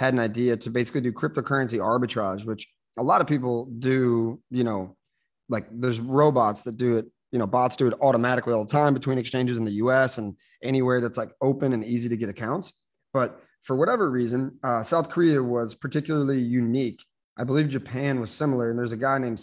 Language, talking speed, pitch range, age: English, 205 wpm, 120-145 Hz, 30-49